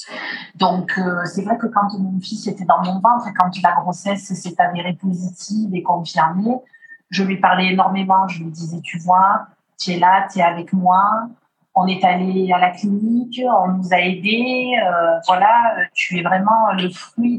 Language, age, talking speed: Spanish, 30-49, 180 wpm